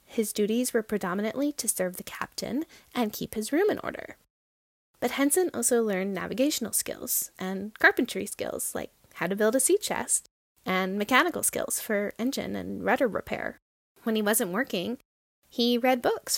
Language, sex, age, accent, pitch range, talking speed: English, female, 10-29, American, 195-240 Hz, 165 wpm